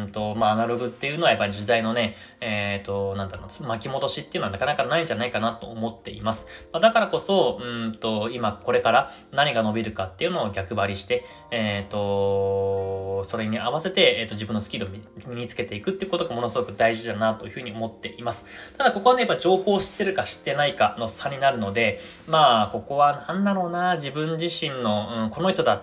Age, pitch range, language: 20-39, 105-165 Hz, Japanese